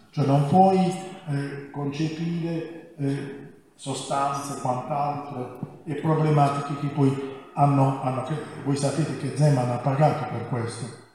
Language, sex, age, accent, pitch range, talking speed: Italian, male, 50-69, native, 130-150 Hz, 110 wpm